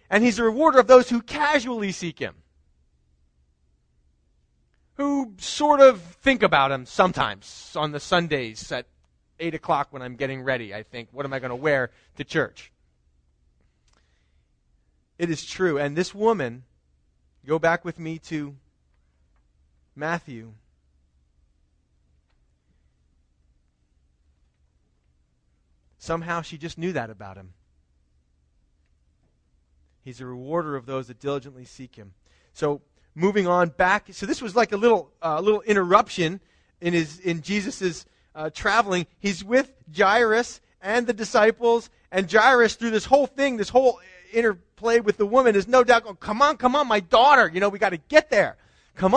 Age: 30-49